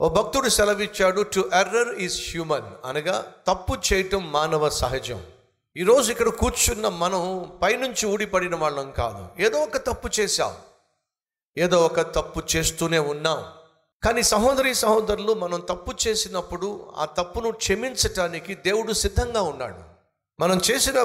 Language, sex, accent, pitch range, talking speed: Telugu, male, native, 160-215 Hz, 125 wpm